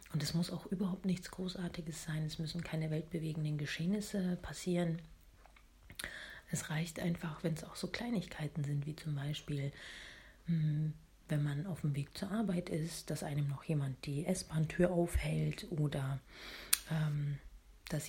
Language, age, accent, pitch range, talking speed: German, 40-59, German, 150-185 Hz, 145 wpm